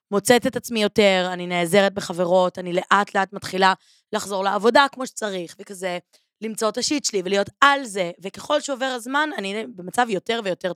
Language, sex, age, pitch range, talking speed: Hebrew, female, 20-39, 185-255 Hz, 165 wpm